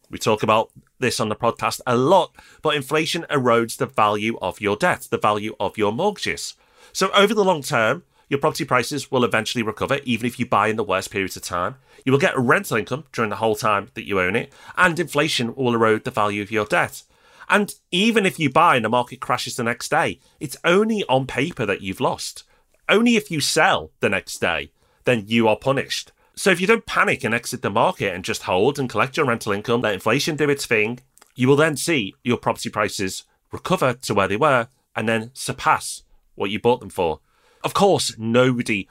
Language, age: English, 30-49